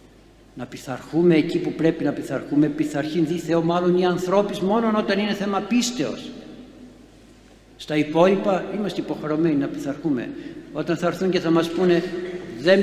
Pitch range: 130-195 Hz